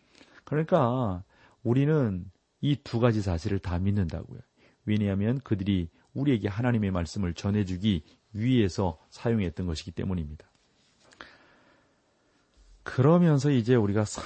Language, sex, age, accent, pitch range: Korean, male, 40-59, native, 90-120 Hz